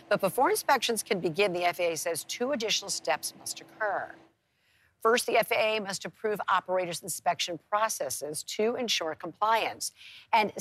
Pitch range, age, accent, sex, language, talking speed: 145-200 Hz, 50-69, American, female, English, 140 wpm